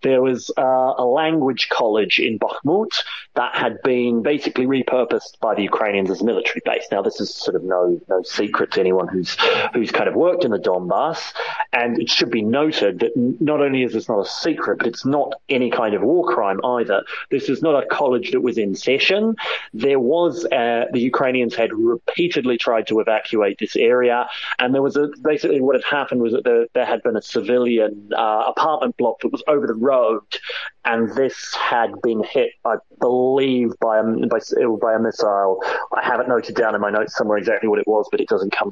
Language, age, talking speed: English, 30-49, 205 wpm